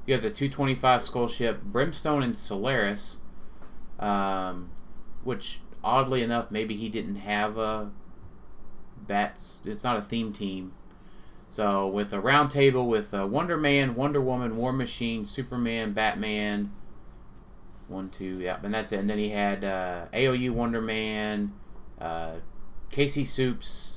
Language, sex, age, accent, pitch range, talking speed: English, male, 30-49, American, 95-115 Hz, 140 wpm